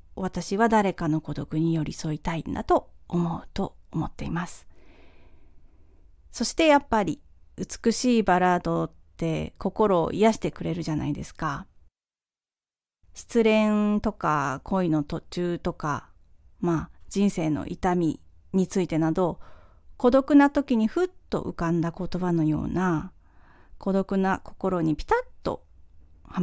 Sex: female